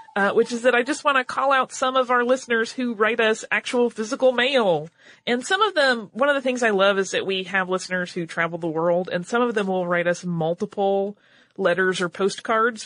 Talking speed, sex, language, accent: 235 wpm, female, English, American